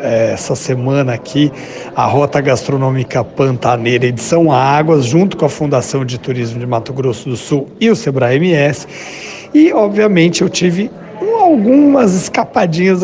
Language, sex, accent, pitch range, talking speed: Portuguese, male, Brazilian, 140-190 Hz, 140 wpm